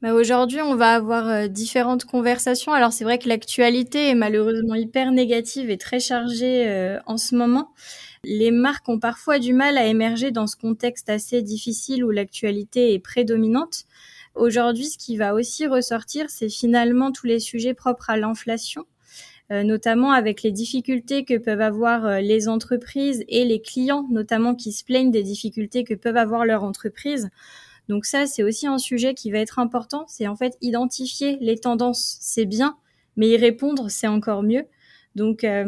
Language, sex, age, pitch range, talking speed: French, female, 20-39, 215-250 Hz, 170 wpm